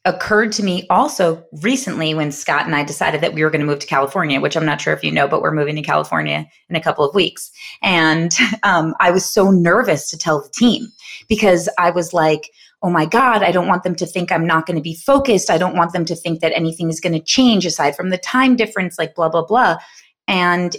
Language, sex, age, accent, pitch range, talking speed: English, female, 30-49, American, 170-215 Hz, 250 wpm